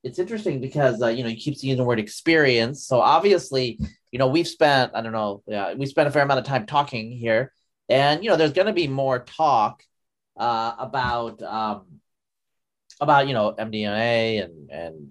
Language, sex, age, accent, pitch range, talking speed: English, male, 30-49, American, 120-155 Hz, 195 wpm